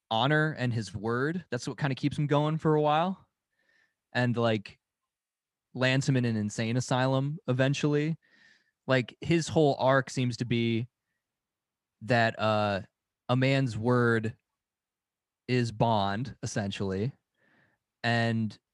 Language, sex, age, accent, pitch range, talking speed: English, male, 20-39, American, 110-135 Hz, 125 wpm